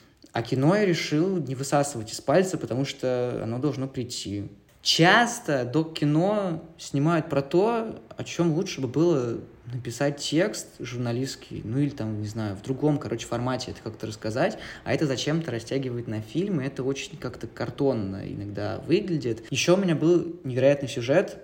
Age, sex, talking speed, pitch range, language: 20-39, male, 160 wpm, 115-150 Hz, Russian